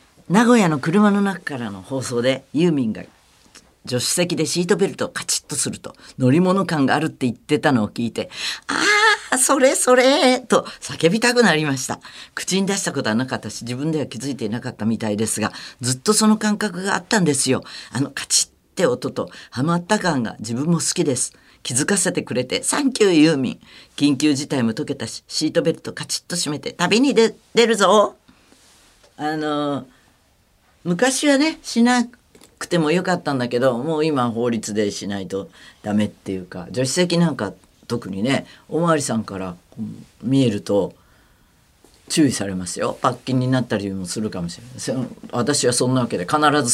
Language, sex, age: Japanese, female, 50-69